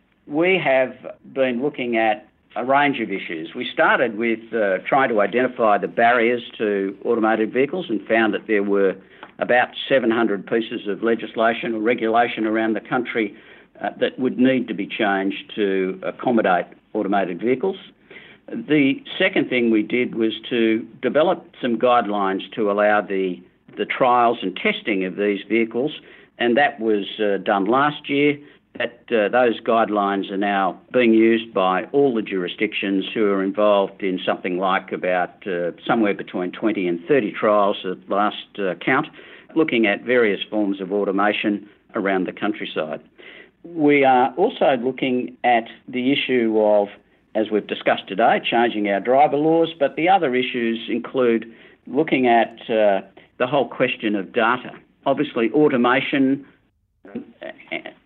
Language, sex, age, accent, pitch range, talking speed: English, male, 50-69, Australian, 100-130 Hz, 150 wpm